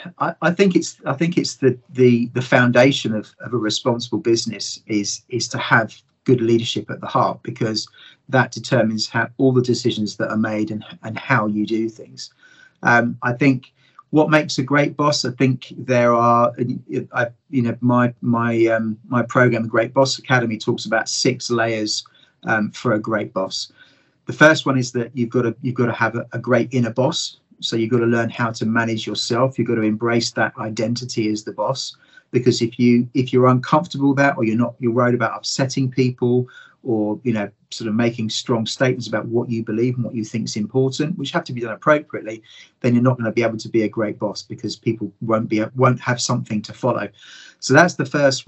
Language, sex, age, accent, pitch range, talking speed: English, male, 40-59, British, 115-130 Hz, 215 wpm